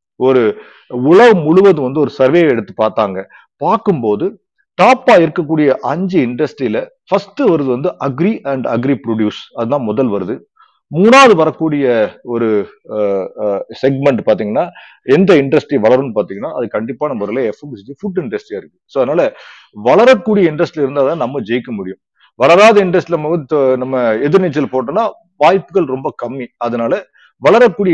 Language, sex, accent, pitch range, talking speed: Tamil, male, native, 130-195 Hz, 130 wpm